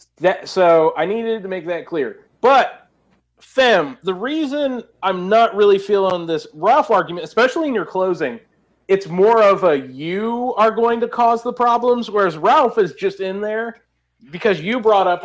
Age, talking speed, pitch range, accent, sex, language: 30-49, 175 wpm, 170-225 Hz, American, male, English